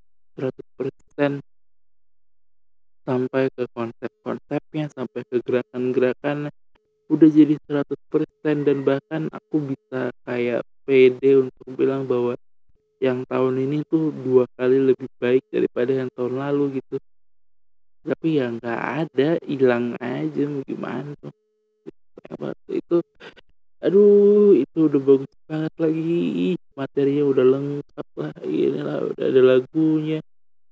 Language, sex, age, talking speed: Indonesian, male, 20-39, 110 wpm